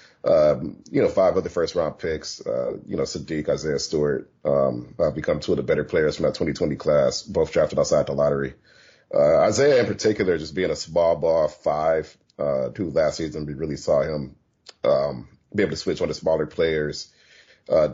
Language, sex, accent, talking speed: English, male, American, 200 wpm